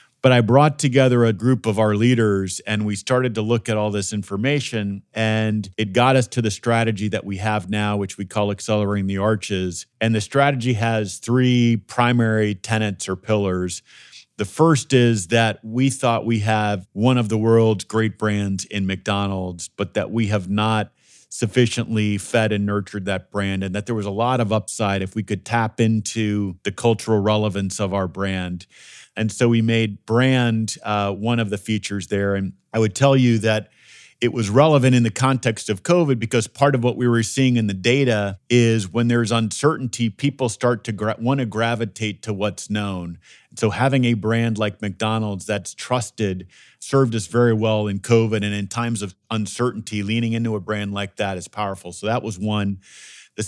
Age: 40-59